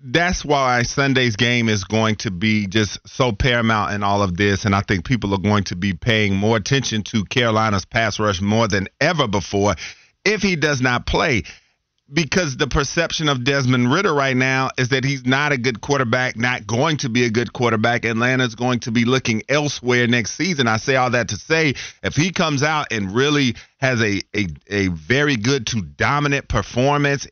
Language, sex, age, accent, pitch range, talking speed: English, male, 40-59, American, 110-135 Hz, 195 wpm